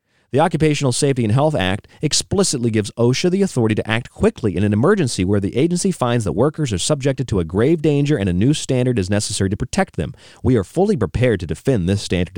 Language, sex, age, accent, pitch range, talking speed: English, male, 40-59, American, 85-120 Hz, 225 wpm